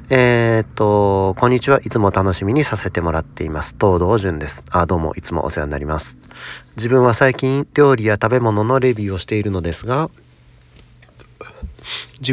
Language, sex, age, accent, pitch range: Japanese, male, 40-59, native, 80-115 Hz